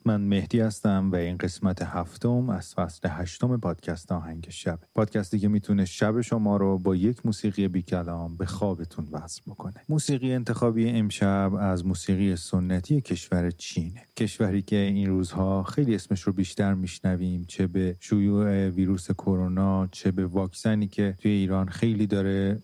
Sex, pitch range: male, 90-105 Hz